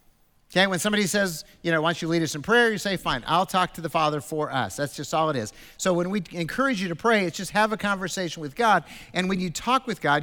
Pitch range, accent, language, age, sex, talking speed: 140-190 Hz, American, English, 50-69, male, 280 wpm